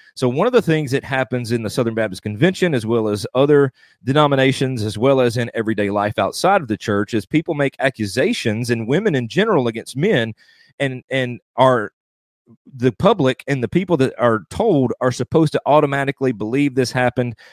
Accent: American